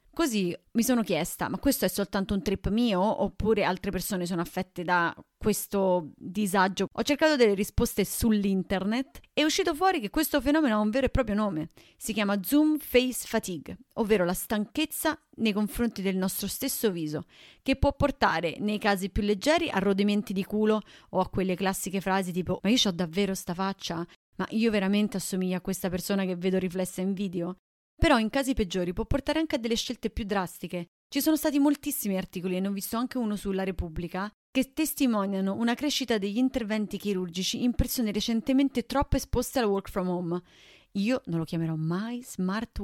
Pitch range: 185-245 Hz